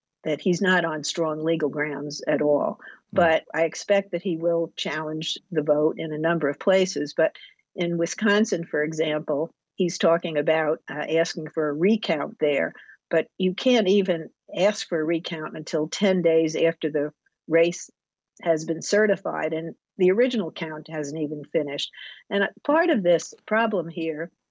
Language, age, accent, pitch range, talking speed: English, 50-69, American, 160-195 Hz, 165 wpm